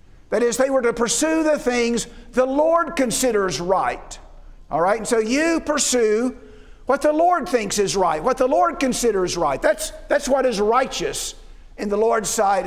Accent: American